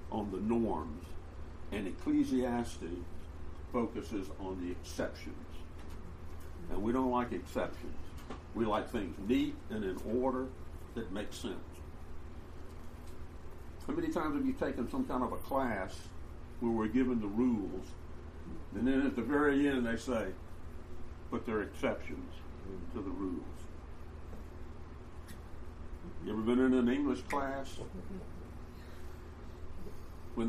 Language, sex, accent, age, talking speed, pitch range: English, male, American, 60-79, 125 wpm, 80-120 Hz